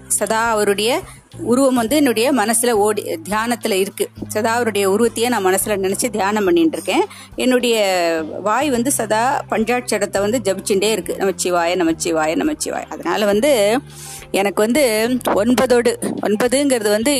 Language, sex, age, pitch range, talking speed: Tamil, female, 30-49, 190-250 Hz, 120 wpm